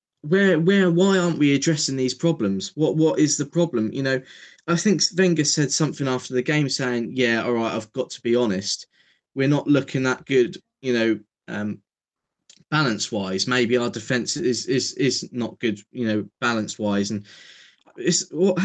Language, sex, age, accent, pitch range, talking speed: English, male, 10-29, British, 110-150 Hz, 180 wpm